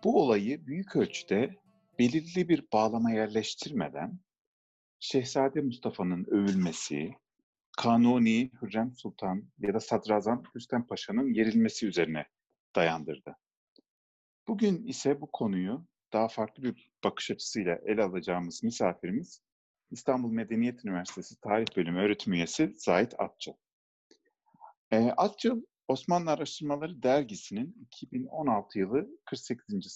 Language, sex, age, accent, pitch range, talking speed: English, male, 40-59, Turkish, 115-180 Hz, 100 wpm